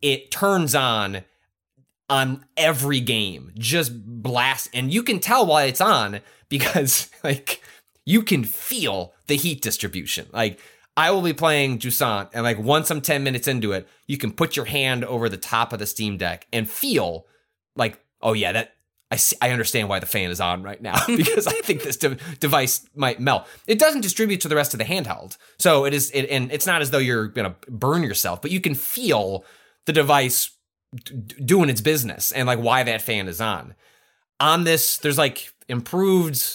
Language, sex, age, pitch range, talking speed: English, male, 20-39, 110-150 Hz, 195 wpm